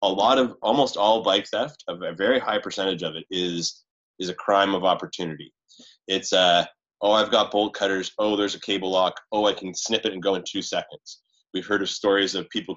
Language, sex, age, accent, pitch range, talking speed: English, male, 20-39, American, 95-115 Hz, 220 wpm